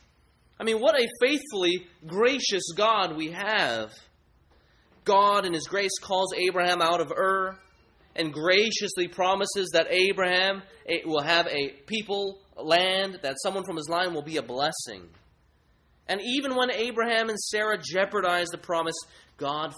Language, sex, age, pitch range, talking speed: English, male, 30-49, 130-205 Hz, 145 wpm